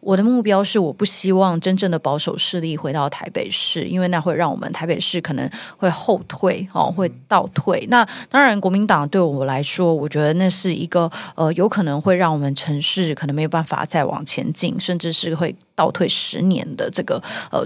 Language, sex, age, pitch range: Chinese, female, 30-49, 165-210 Hz